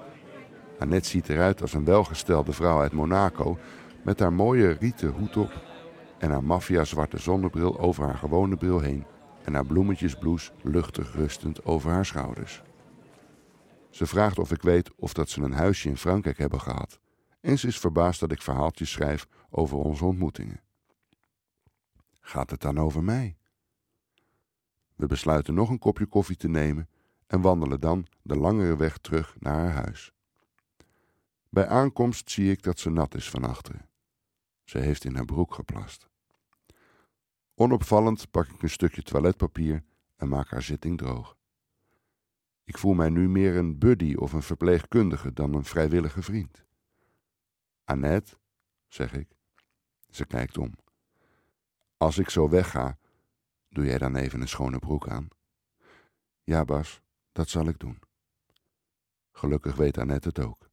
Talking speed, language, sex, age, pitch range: 150 wpm, Dutch, male, 60-79, 75-95 Hz